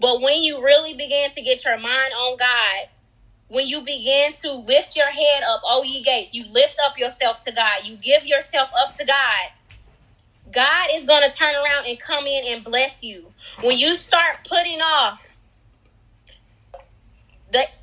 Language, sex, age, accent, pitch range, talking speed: English, female, 20-39, American, 255-315 Hz, 170 wpm